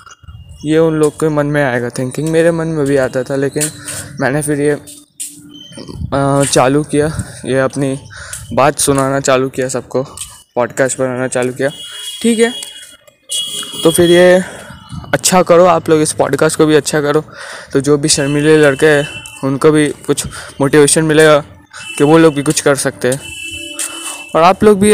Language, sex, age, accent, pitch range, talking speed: Hindi, male, 20-39, native, 135-170 Hz, 165 wpm